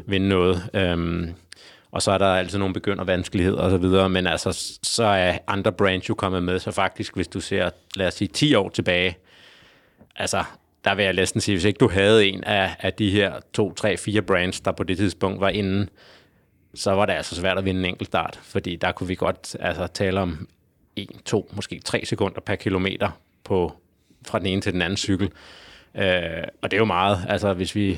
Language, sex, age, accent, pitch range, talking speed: Danish, male, 30-49, native, 90-100 Hz, 215 wpm